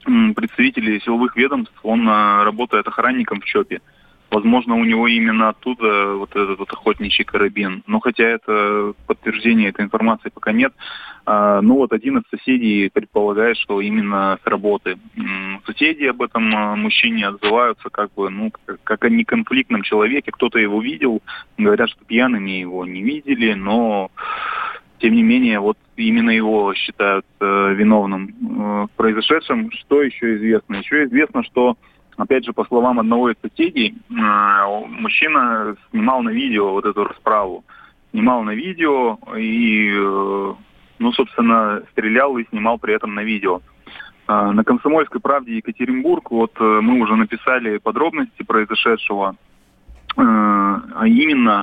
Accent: native